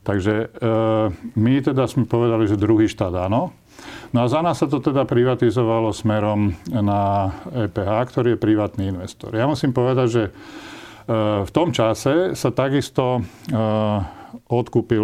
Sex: male